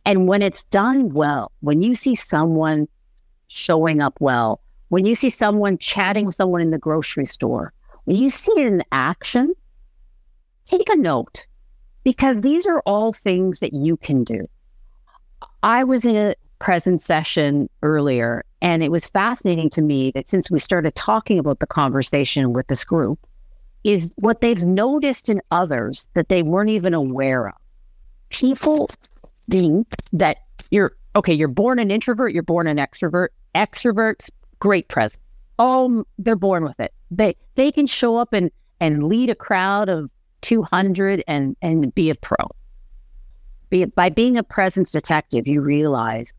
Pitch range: 150-220 Hz